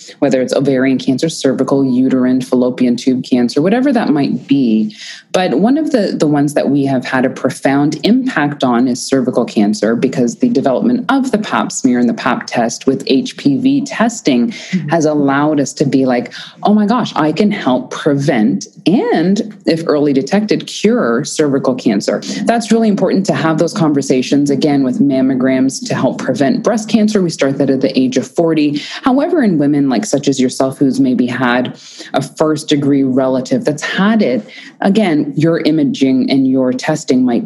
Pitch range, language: 130-215 Hz, English